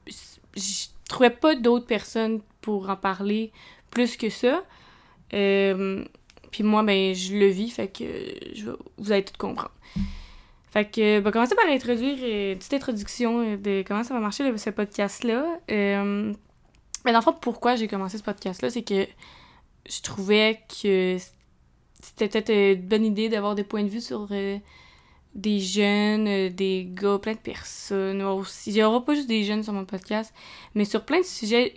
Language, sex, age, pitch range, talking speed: French, female, 20-39, 195-230 Hz, 170 wpm